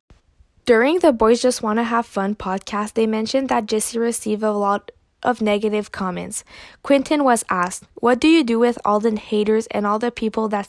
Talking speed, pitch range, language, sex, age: 190 wpm, 210-240 Hz, English, female, 10-29